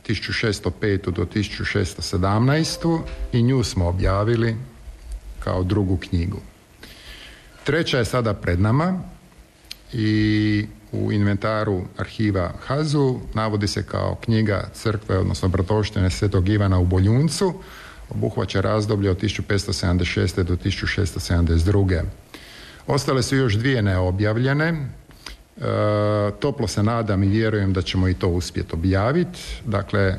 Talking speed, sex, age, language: 110 wpm, male, 50-69, Croatian